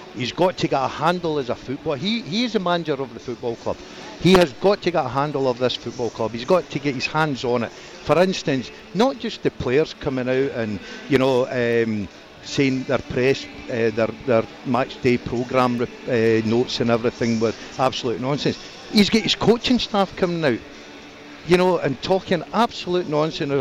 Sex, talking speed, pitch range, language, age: male, 200 wpm, 130-180 Hz, English, 60-79